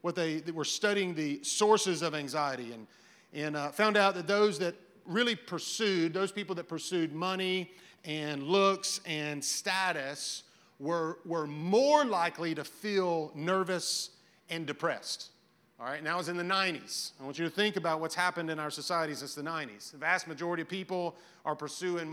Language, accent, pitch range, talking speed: English, American, 155-190 Hz, 175 wpm